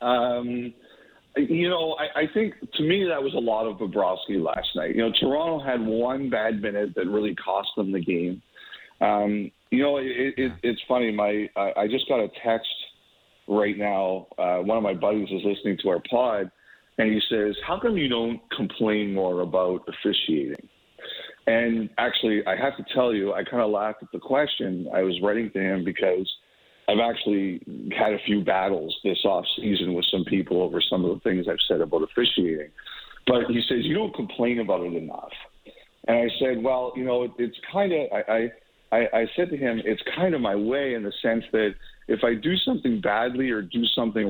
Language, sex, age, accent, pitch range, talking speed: English, male, 40-59, American, 100-120 Hz, 200 wpm